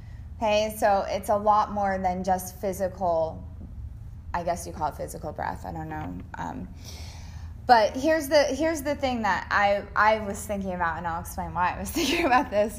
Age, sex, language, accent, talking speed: 20-39, female, English, American, 190 wpm